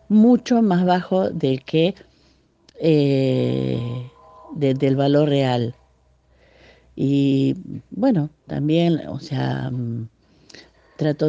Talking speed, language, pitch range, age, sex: 90 wpm, Spanish, 135-175 Hz, 50-69, female